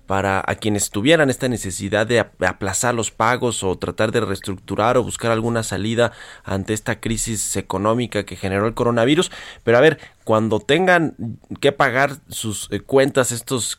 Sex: male